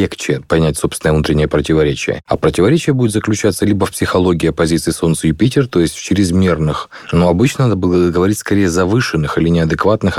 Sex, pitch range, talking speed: male, 85-105 Hz, 165 wpm